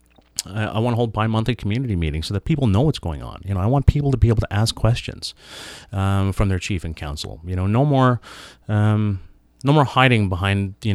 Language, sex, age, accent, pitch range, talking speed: English, male, 30-49, American, 95-120 Hz, 225 wpm